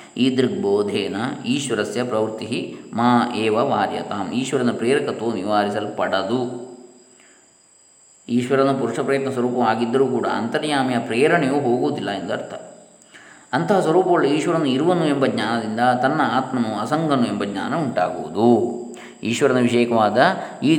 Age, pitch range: 20-39, 110-140 Hz